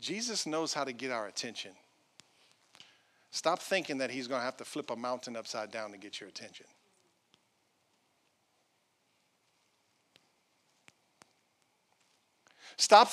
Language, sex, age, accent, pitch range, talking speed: English, male, 50-69, American, 125-190 Hz, 115 wpm